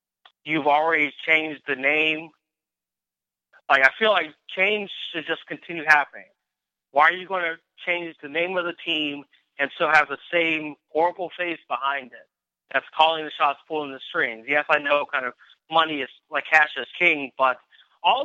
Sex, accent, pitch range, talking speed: male, American, 145-170 Hz, 180 wpm